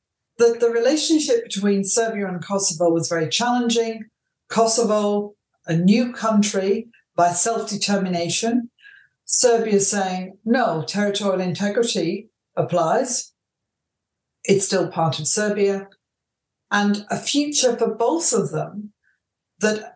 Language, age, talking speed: English, 50-69, 105 wpm